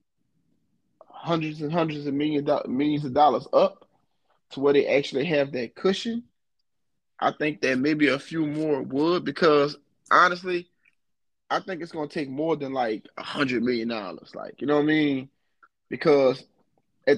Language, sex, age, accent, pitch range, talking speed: English, male, 20-39, American, 135-165 Hz, 155 wpm